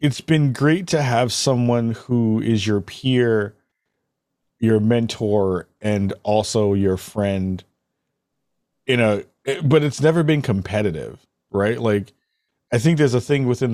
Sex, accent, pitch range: male, American, 95-130 Hz